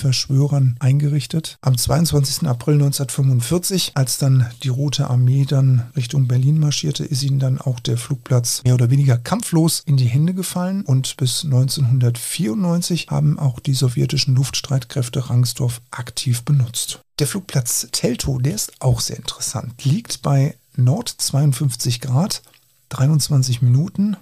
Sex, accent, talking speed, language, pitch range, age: male, German, 135 wpm, German, 125-155 Hz, 50-69